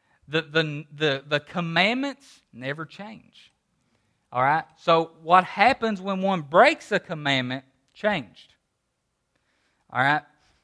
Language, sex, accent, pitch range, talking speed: English, male, American, 140-200 Hz, 115 wpm